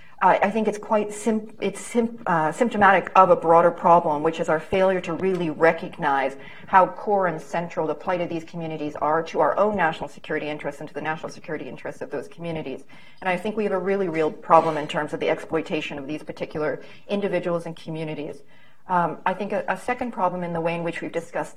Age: 40-59